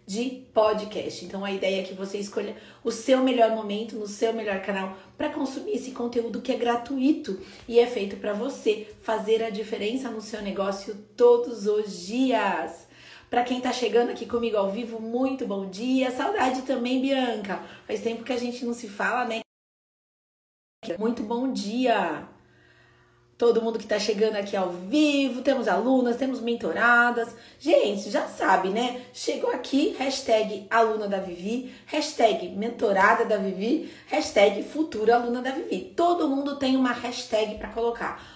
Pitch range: 210-255 Hz